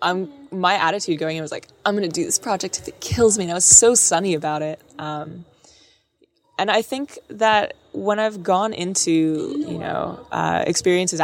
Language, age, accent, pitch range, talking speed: English, 20-39, American, 155-180 Hz, 200 wpm